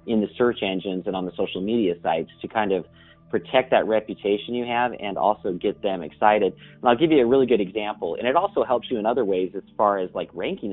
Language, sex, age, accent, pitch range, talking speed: English, male, 40-59, American, 100-125 Hz, 245 wpm